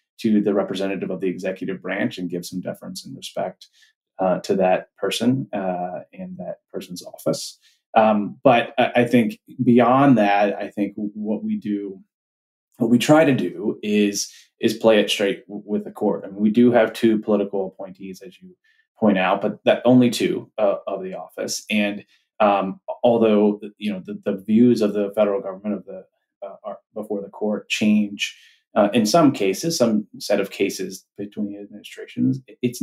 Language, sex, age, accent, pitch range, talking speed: English, male, 30-49, American, 100-115 Hz, 185 wpm